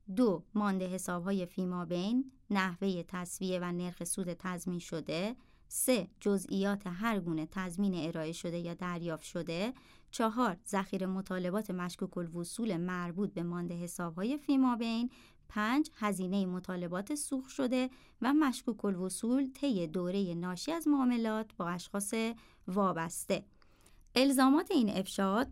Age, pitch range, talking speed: 30-49, 180-240 Hz, 130 wpm